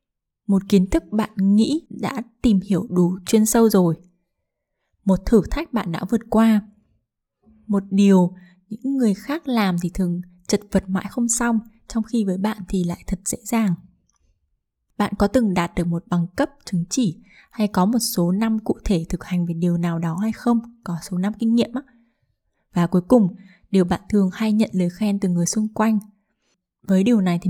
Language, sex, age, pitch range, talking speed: Vietnamese, female, 20-39, 180-225 Hz, 195 wpm